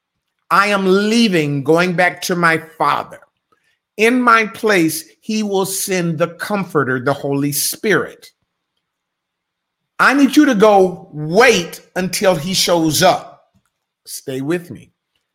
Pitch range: 150-205 Hz